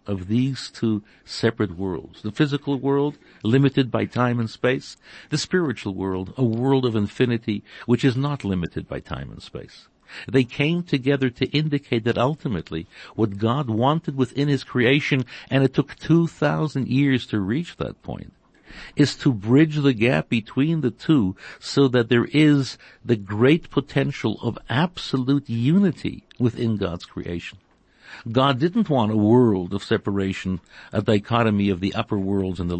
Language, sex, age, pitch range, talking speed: English, male, 60-79, 110-145 Hz, 160 wpm